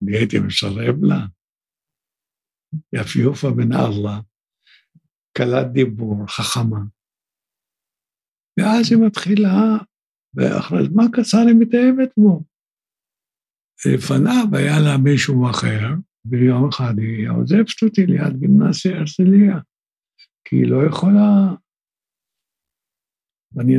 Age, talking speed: 60-79, 95 wpm